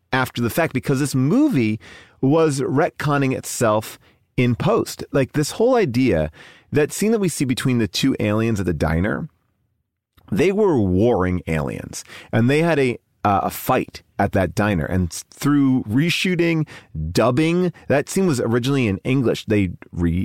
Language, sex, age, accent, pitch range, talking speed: English, male, 30-49, American, 100-145 Hz, 155 wpm